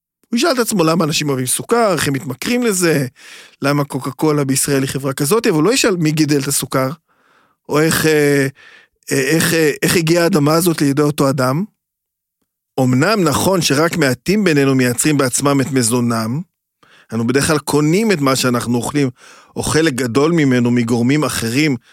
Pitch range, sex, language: 125-155 Hz, male, Hebrew